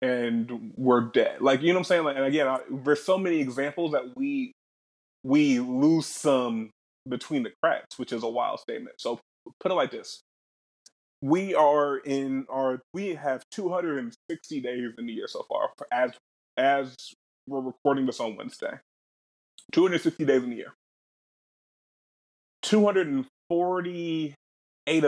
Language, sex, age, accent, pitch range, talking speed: English, male, 20-39, American, 130-170 Hz, 145 wpm